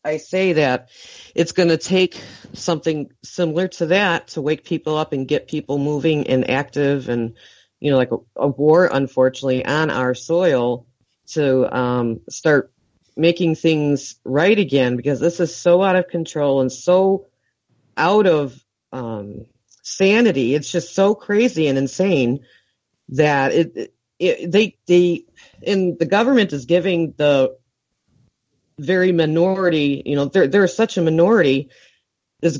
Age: 40-59